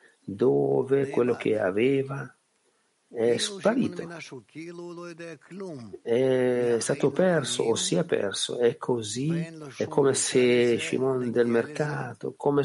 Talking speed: 105 wpm